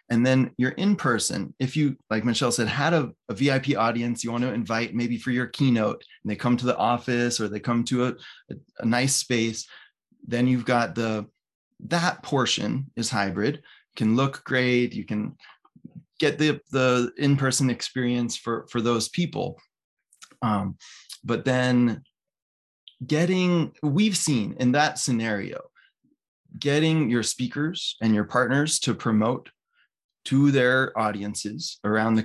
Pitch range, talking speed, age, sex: 115-140 Hz, 150 wpm, 20-39, male